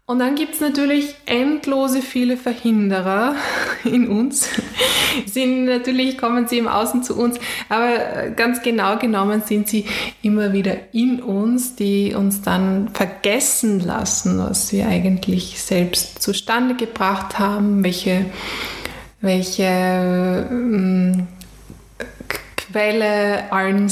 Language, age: German, 20-39